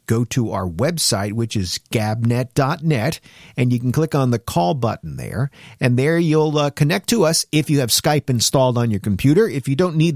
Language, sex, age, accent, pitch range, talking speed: English, male, 50-69, American, 115-155 Hz, 205 wpm